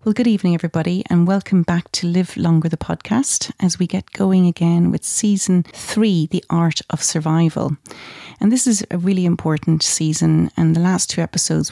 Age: 30-49